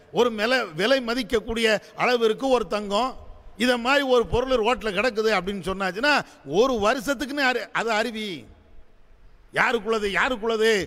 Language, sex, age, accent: English, male, 50-69, Indian